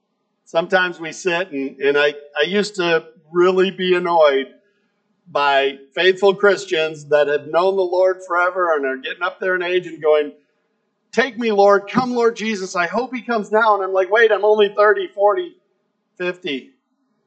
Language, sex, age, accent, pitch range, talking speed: English, male, 50-69, American, 150-210 Hz, 175 wpm